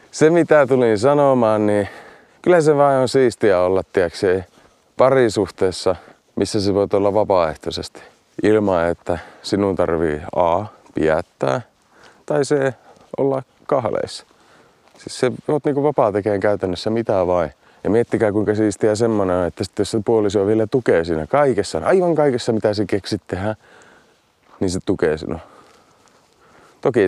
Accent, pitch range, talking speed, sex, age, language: native, 95-120 Hz, 135 wpm, male, 30-49, Finnish